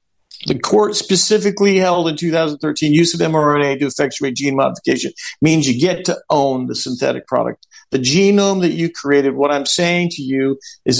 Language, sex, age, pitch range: English, male, 50-69, 135-180 Hz